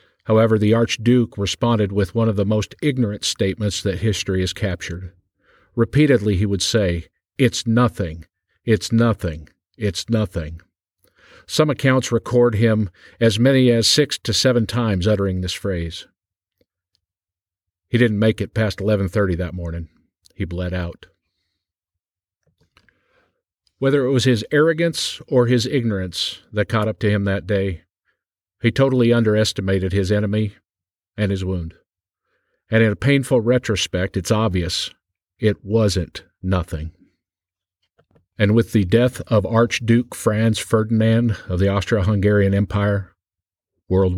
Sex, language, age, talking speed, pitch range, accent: male, English, 50-69, 130 wpm, 95-115 Hz, American